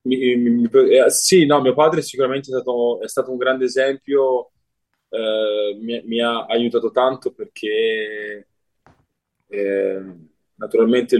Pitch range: 115-140 Hz